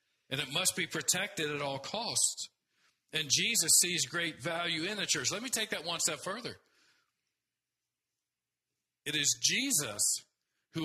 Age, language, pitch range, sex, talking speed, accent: 50-69, English, 130-170 Hz, male, 150 wpm, American